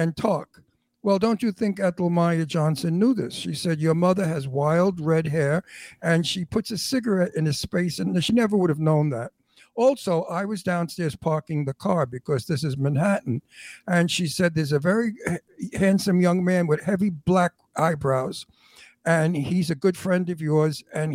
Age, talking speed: 60-79, 185 wpm